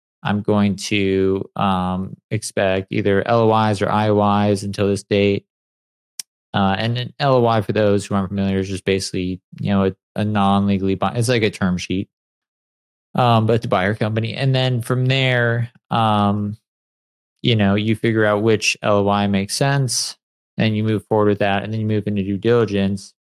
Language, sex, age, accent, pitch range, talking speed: English, male, 20-39, American, 95-115 Hz, 175 wpm